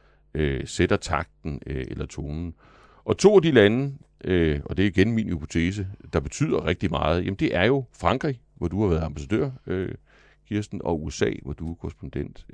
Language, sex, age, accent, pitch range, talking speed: Danish, male, 60-79, native, 80-115 Hz, 170 wpm